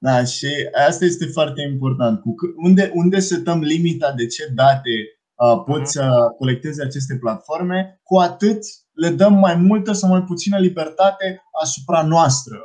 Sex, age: male, 20-39